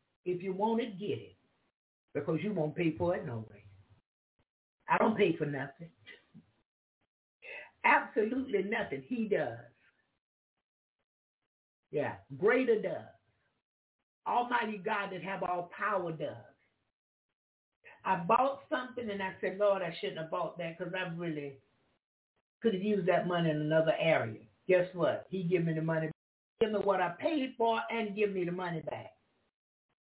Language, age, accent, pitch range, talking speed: English, 60-79, American, 175-235 Hz, 150 wpm